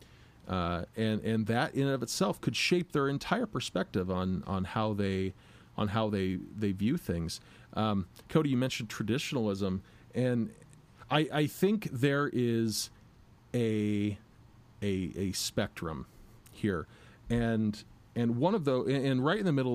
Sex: male